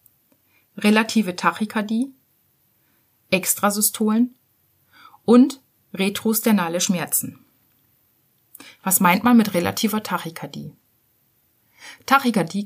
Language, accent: German, German